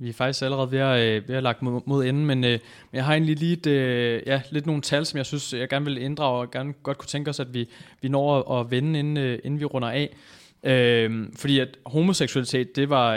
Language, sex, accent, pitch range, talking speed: Danish, male, native, 115-140 Hz, 230 wpm